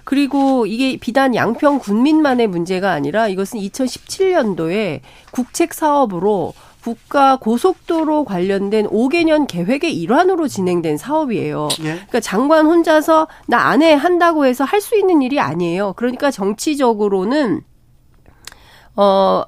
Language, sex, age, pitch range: Korean, female, 40-59, 200-295 Hz